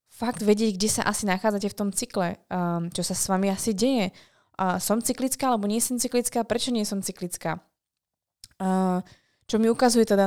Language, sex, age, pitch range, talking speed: Slovak, female, 20-39, 185-215 Hz, 170 wpm